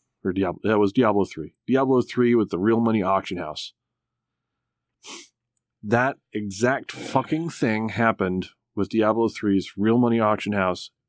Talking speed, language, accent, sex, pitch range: 135 wpm, English, American, male, 100-125 Hz